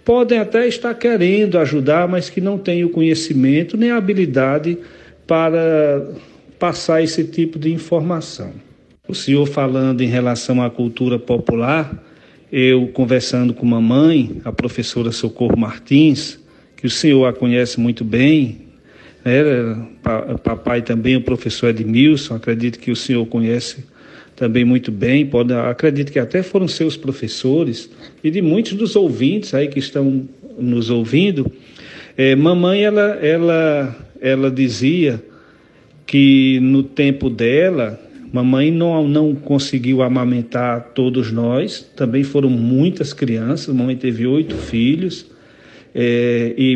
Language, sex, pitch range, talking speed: Portuguese, male, 120-155 Hz, 125 wpm